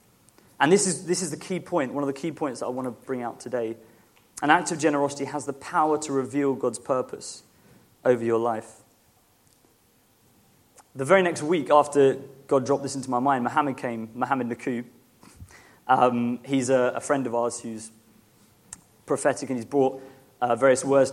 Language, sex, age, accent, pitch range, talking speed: English, male, 30-49, British, 125-155 Hz, 180 wpm